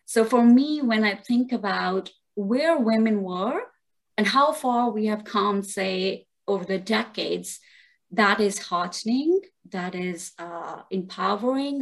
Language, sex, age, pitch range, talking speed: English, female, 30-49, 190-245 Hz, 135 wpm